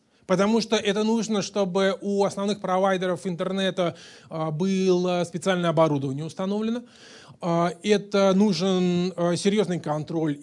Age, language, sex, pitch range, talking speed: 20-39, Russian, male, 175-215 Hz, 100 wpm